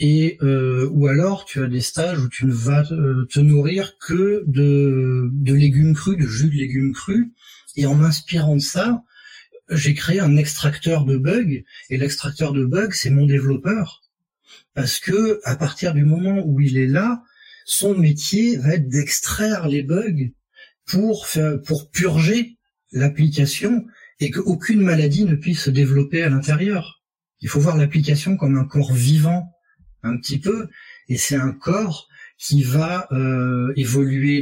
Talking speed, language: 160 wpm, French